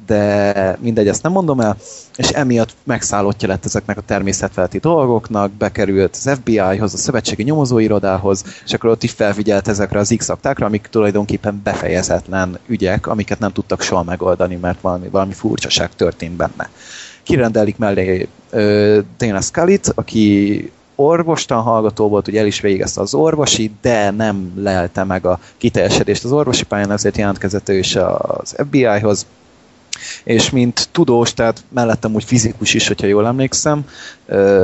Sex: male